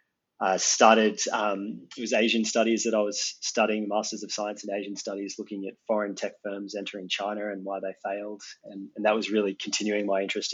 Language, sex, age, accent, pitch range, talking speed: English, male, 20-39, Australian, 100-110 Hz, 205 wpm